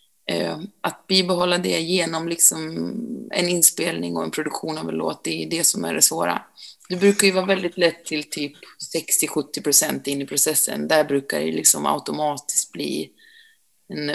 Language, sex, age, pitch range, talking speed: Swedish, female, 30-49, 155-190 Hz, 165 wpm